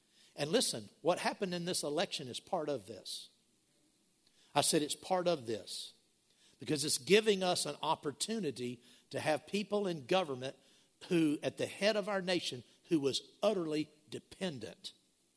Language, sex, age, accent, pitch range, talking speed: English, male, 60-79, American, 135-185 Hz, 150 wpm